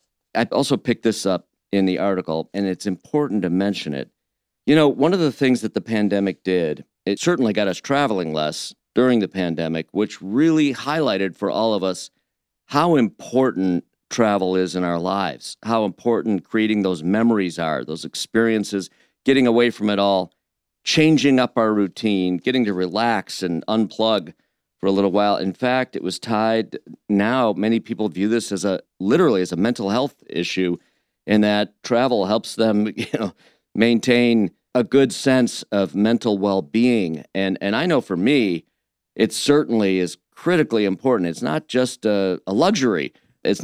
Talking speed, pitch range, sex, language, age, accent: 170 wpm, 95-120 Hz, male, English, 50-69, American